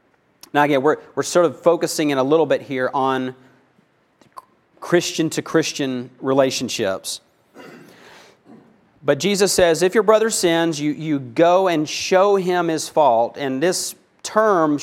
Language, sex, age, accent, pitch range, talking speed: English, male, 40-59, American, 145-185 Hz, 140 wpm